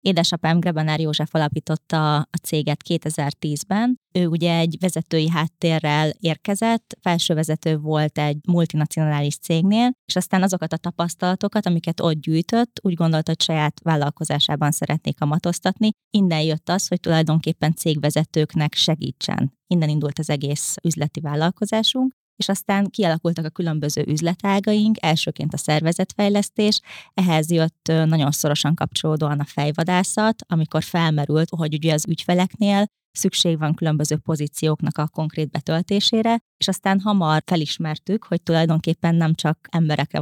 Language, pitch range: Hungarian, 155-175 Hz